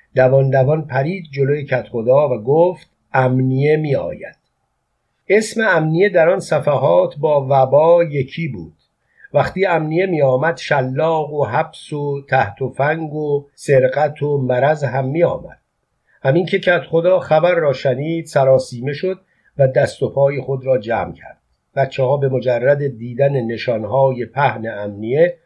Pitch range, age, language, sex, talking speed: 130-160 Hz, 50-69, Persian, male, 140 wpm